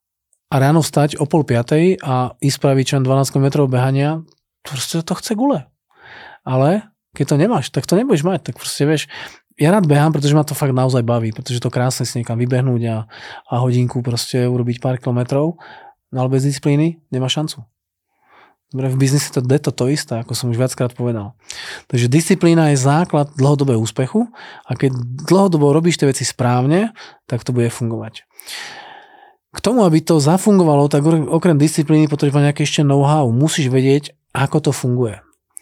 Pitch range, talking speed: 125-155 Hz, 165 wpm